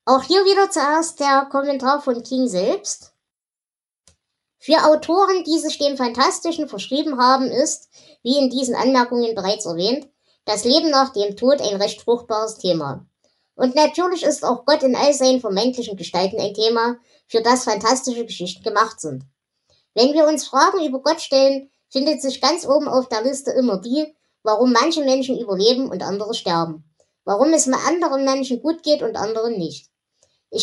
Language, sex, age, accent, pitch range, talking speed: German, male, 20-39, German, 215-290 Hz, 165 wpm